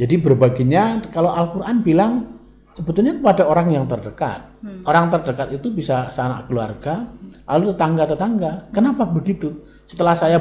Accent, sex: native, male